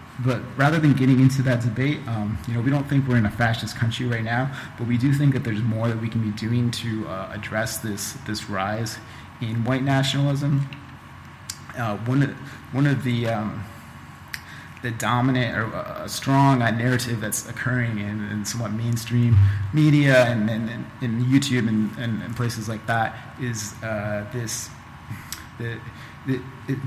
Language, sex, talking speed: English, male, 170 wpm